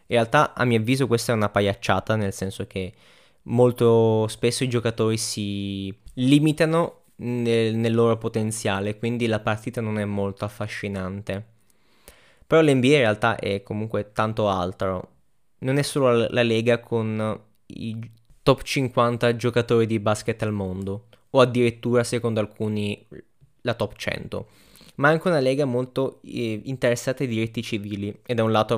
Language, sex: Italian, male